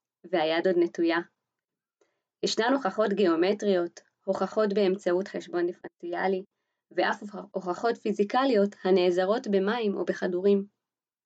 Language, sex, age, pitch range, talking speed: Hebrew, female, 20-39, 180-220 Hz, 90 wpm